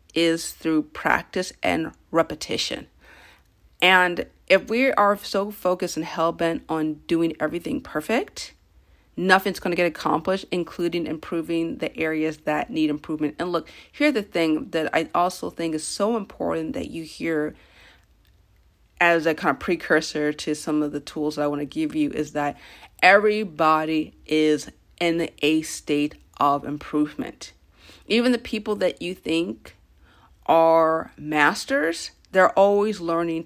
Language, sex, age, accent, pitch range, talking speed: English, female, 40-59, American, 150-180 Hz, 140 wpm